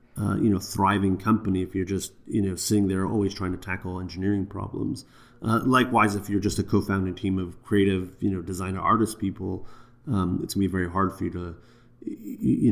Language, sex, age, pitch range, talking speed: English, male, 30-49, 95-110 Hz, 210 wpm